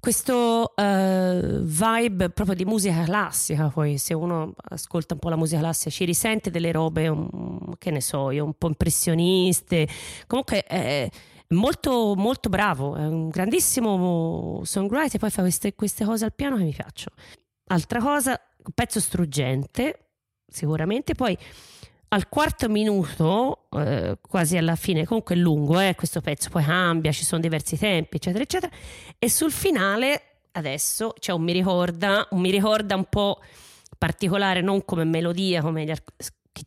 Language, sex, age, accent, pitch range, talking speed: Italian, female, 30-49, native, 160-215 Hz, 160 wpm